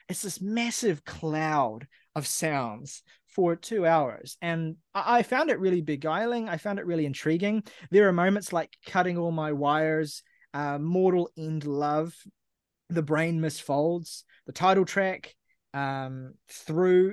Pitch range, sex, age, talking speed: 150-185 Hz, male, 20-39, 140 wpm